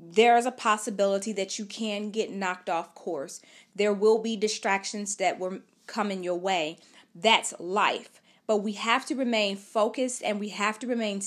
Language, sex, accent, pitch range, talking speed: English, female, American, 200-240 Hz, 180 wpm